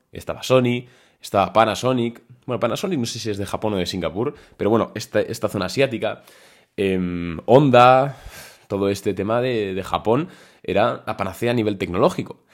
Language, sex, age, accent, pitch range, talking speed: Spanish, male, 20-39, Spanish, 95-125 Hz, 170 wpm